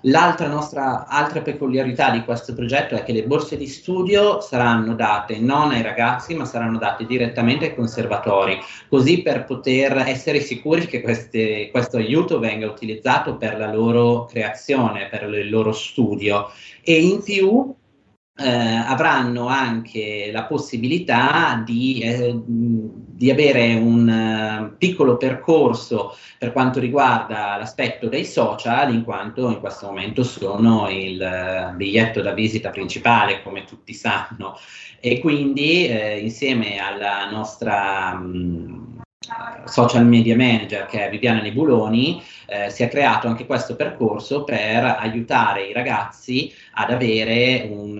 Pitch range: 110-130 Hz